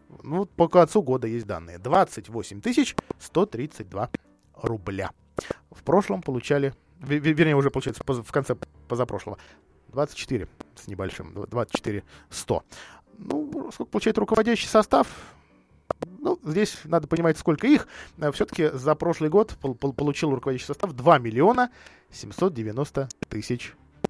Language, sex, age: Russian, male, 20-39